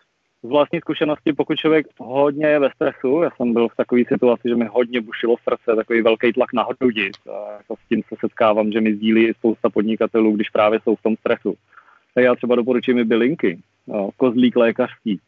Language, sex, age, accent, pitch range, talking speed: Czech, male, 30-49, native, 105-120 Hz, 190 wpm